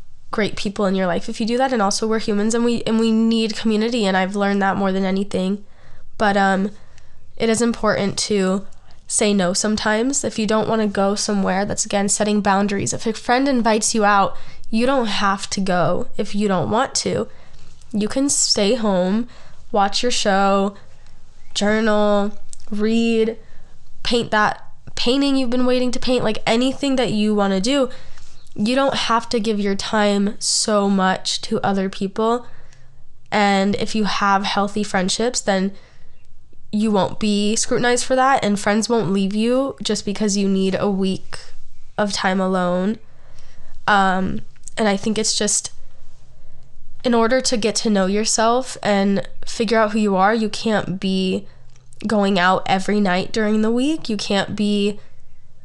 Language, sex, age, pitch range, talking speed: English, female, 10-29, 195-225 Hz, 170 wpm